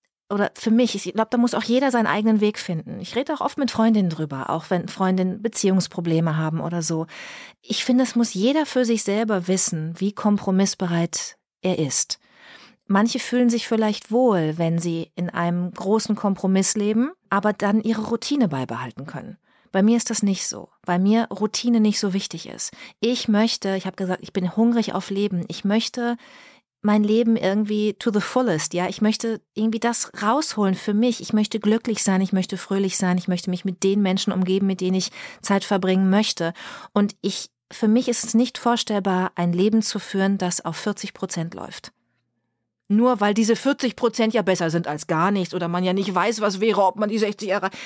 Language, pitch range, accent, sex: German, 185-220 Hz, German, female